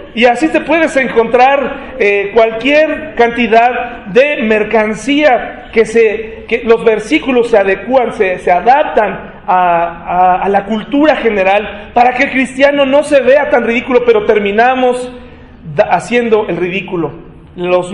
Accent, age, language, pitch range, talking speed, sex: Mexican, 40-59, Spanish, 205-260 Hz, 135 wpm, male